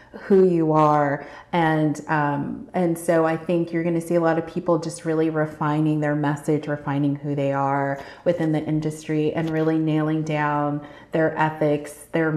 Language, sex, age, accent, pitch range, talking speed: English, female, 30-49, American, 155-190 Hz, 175 wpm